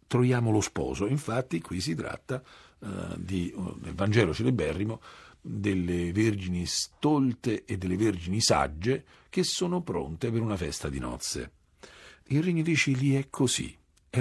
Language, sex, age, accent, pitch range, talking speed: Italian, male, 50-69, native, 85-130 Hz, 140 wpm